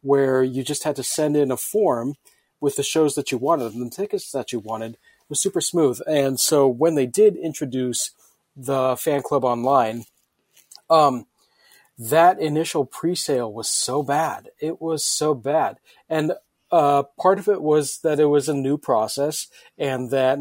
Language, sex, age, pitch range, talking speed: English, male, 40-59, 135-155 Hz, 175 wpm